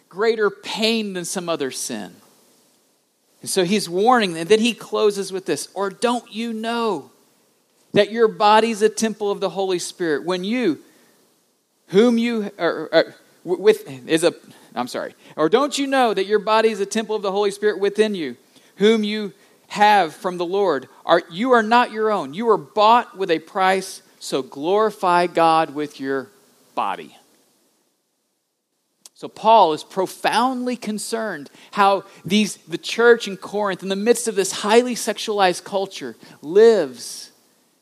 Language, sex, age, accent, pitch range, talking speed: English, male, 40-59, American, 170-220 Hz, 160 wpm